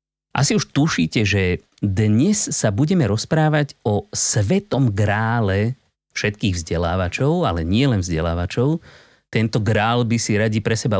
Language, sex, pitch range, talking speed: Slovak, male, 100-140 Hz, 125 wpm